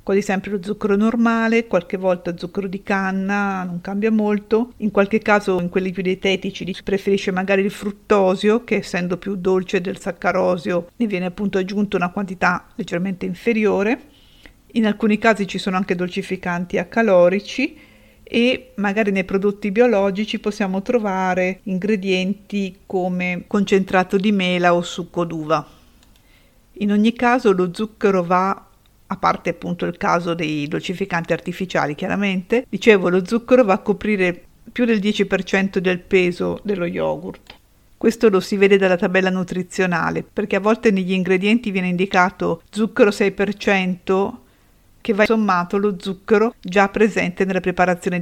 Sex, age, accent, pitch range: female, 50-69, native, 180-210 Hz